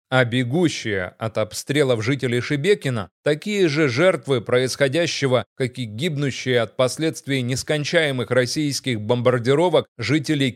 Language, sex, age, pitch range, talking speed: Russian, male, 30-49, 125-160 Hz, 115 wpm